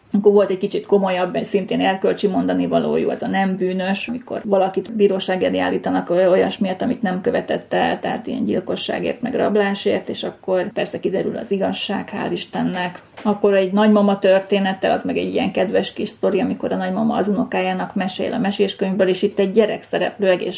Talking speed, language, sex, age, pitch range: 175 wpm, Hungarian, female, 30-49, 190-210 Hz